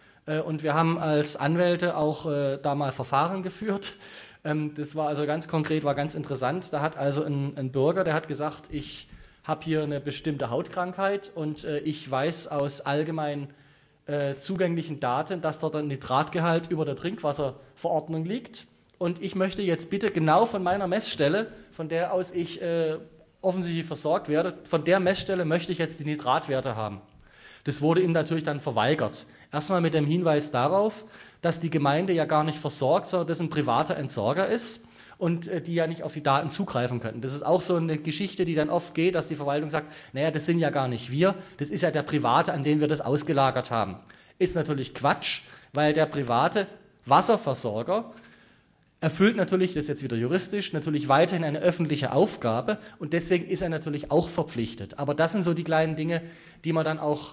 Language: German